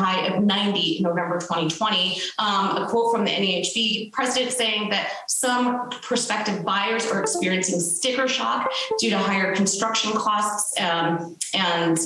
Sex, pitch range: female, 190-230 Hz